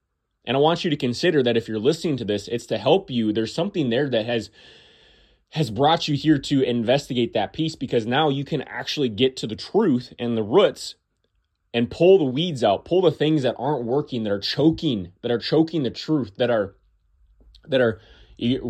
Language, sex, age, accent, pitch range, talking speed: English, male, 20-39, American, 110-135 Hz, 210 wpm